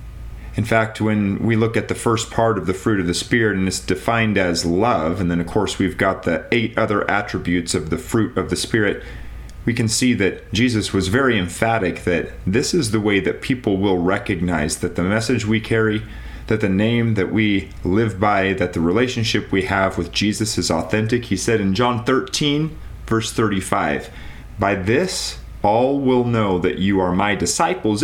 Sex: male